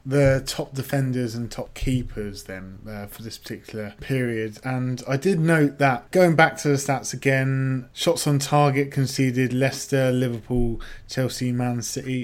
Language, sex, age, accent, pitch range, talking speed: English, male, 20-39, British, 120-140 Hz, 155 wpm